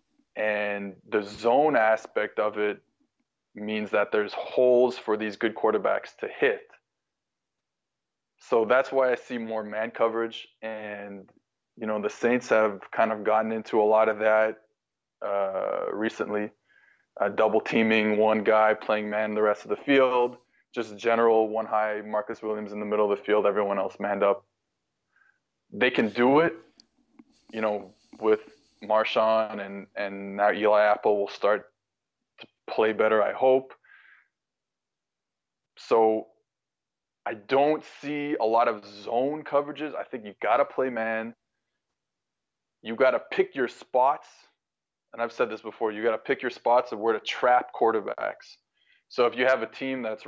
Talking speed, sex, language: 160 wpm, male, English